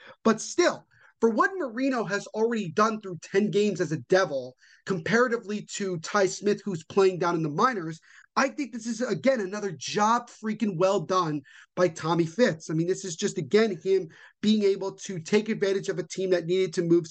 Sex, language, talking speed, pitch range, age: male, English, 195 wpm, 175-225 Hz, 30-49